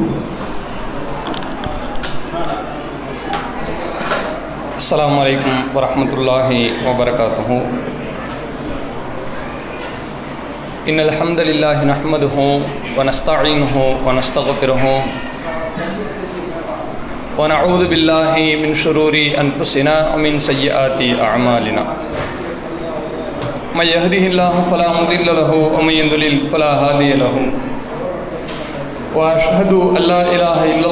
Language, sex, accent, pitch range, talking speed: English, male, Indian, 140-170 Hz, 70 wpm